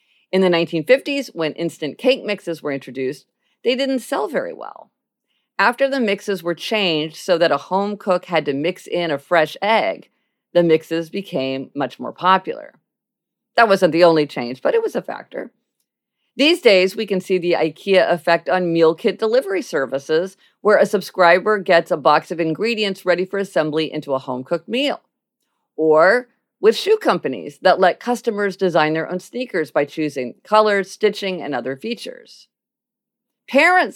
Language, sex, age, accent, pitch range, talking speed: English, female, 50-69, American, 160-225 Hz, 165 wpm